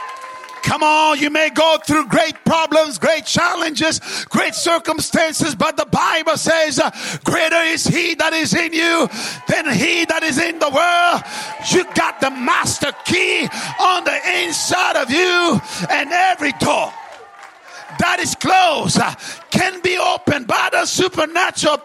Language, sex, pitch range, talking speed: English, male, 310-370 Hz, 150 wpm